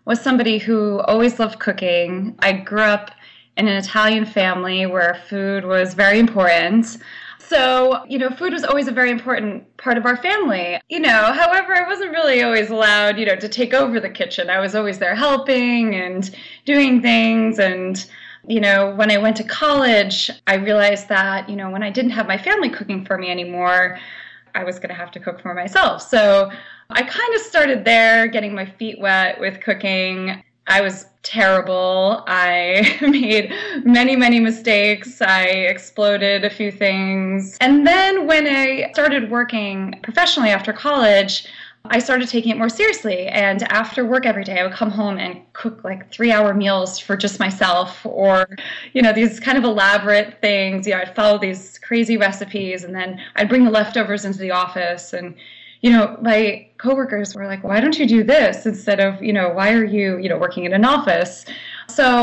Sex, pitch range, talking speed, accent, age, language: female, 195-245 Hz, 185 wpm, American, 20-39, English